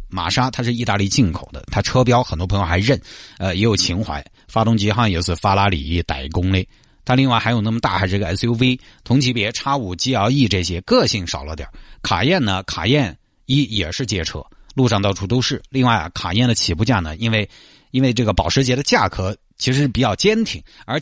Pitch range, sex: 90-130 Hz, male